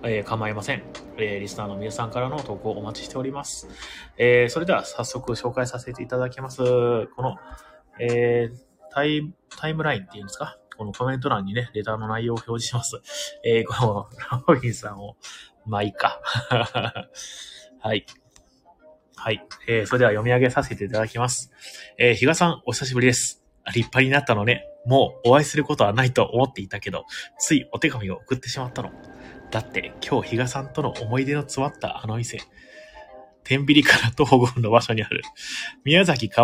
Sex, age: male, 20-39